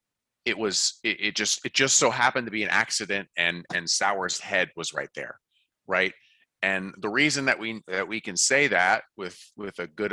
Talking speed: 200 wpm